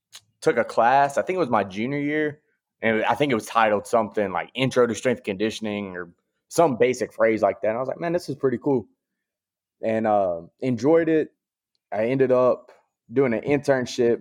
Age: 20-39